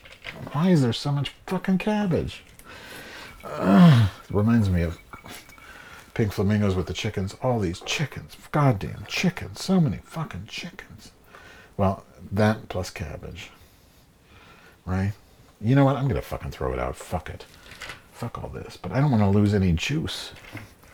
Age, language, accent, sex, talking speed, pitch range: 60-79, English, American, male, 150 wpm, 90-115 Hz